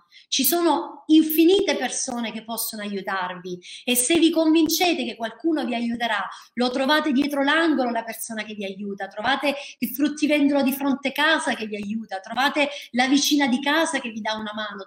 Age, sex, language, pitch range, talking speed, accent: 30-49, female, Italian, 205-290 Hz, 175 wpm, native